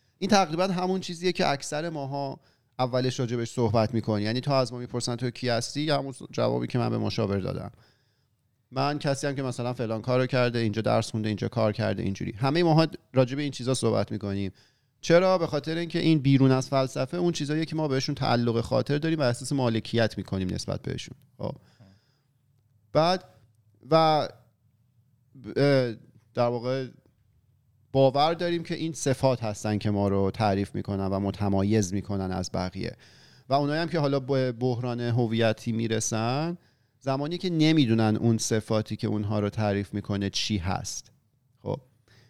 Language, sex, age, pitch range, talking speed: Persian, male, 40-59, 110-135 Hz, 160 wpm